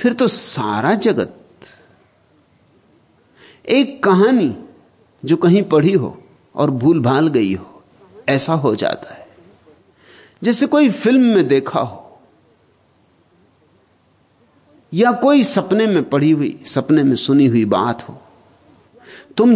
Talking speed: 115 wpm